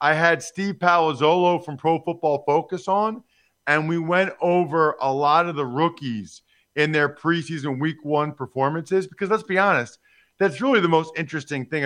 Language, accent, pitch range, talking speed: English, American, 135-180 Hz, 170 wpm